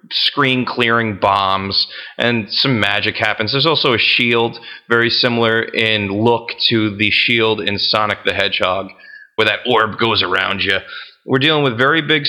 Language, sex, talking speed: English, male, 160 wpm